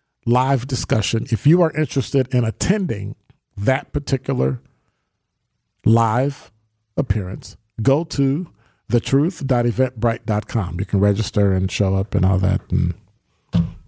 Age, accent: 40-59, American